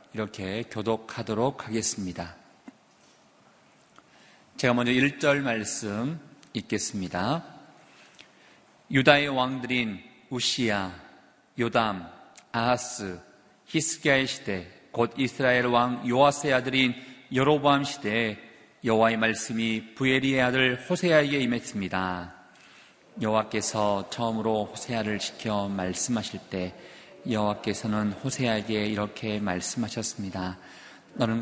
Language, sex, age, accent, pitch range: Korean, male, 40-59, native, 100-125 Hz